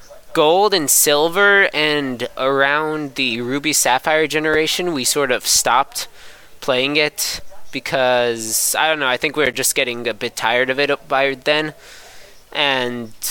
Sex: male